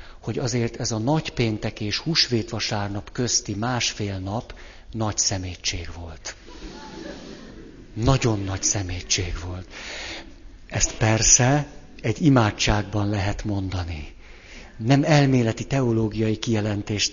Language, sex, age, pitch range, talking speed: Hungarian, male, 60-79, 90-120 Hz, 100 wpm